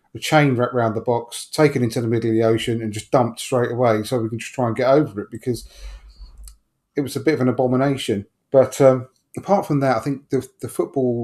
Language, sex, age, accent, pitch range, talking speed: English, male, 30-49, British, 120-150 Hz, 235 wpm